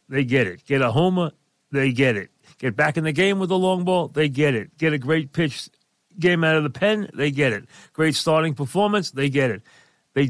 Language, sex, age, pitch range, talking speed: English, male, 40-59, 130-165 Hz, 235 wpm